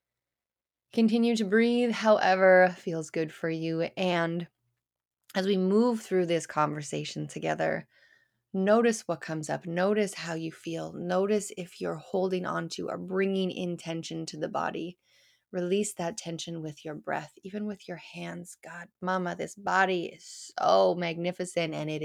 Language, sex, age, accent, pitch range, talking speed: English, female, 20-39, American, 160-200 Hz, 150 wpm